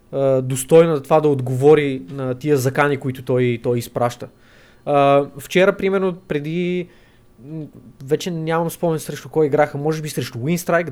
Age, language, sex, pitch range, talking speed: 20-39, Bulgarian, male, 135-175 Hz, 130 wpm